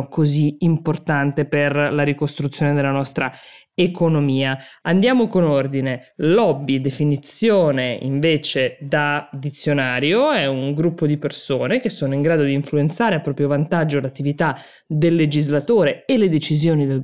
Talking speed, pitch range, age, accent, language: 130 wpm, 140-170 Hz, 20-39, native, Italian